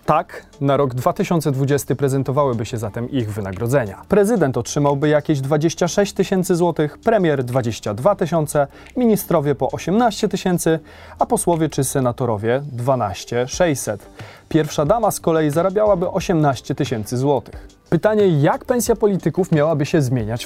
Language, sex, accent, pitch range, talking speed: Polish, male, native, 125-175 Hz, 125 wpm